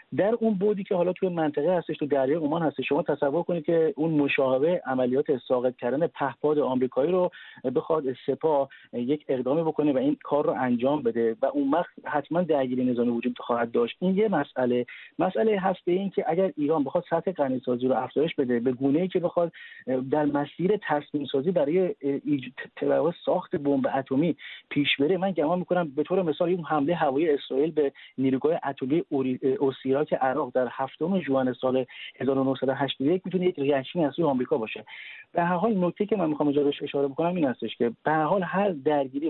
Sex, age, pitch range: male, 40-59, 135-175 Hz